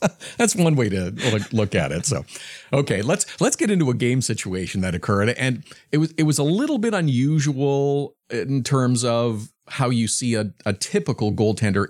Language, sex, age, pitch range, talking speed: English, male, 40-59, 105-140 Hz, 185 wpm